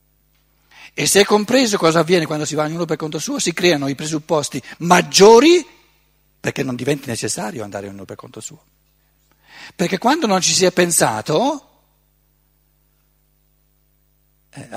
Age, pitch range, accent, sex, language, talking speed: 60-79, 130-175 Hz, native, male, Italian, 150 wpm